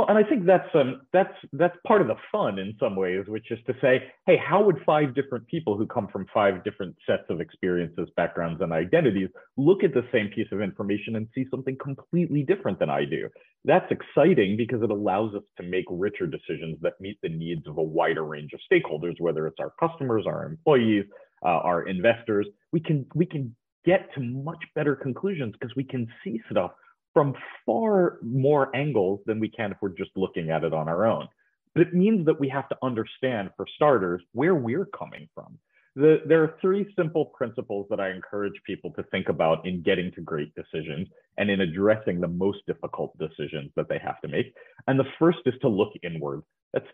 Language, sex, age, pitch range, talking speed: English, male, 30-49, 95-155 Hz, 205 wpm